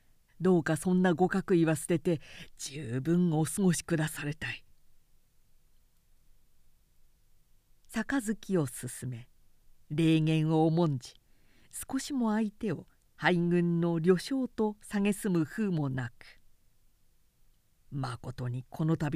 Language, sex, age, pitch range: Japanese, female, 50-69, 135-175 Hz